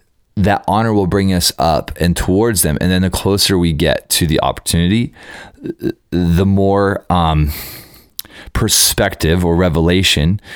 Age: 20-39